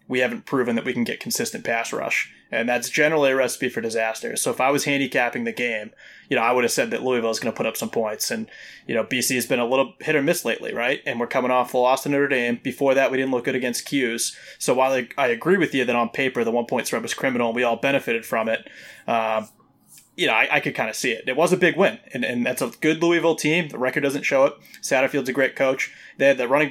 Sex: male